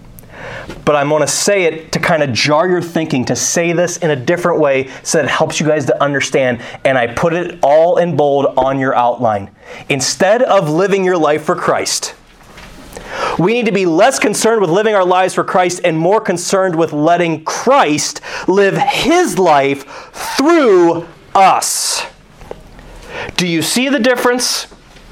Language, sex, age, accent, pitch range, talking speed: English, male, 30-49, American, 155-205 Hz, 170 wpm